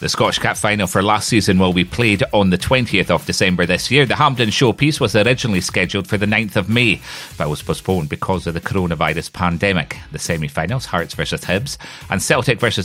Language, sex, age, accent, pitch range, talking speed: English, male, 30-49, British, 85-120 Hz, 205 wpm